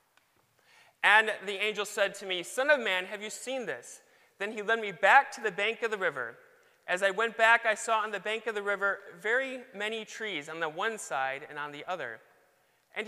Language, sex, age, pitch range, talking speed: English, male, 30-49, 185-235 Hz, 220 wpm